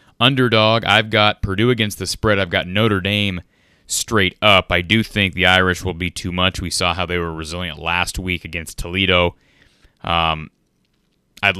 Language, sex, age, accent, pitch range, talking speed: English, male, 30-49, American, 90-110 Hz, 175 wpm